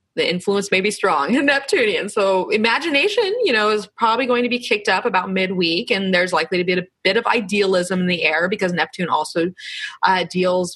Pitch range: 175-245 Hz